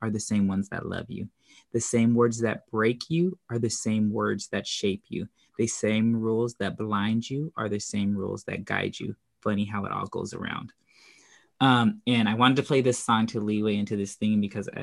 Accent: American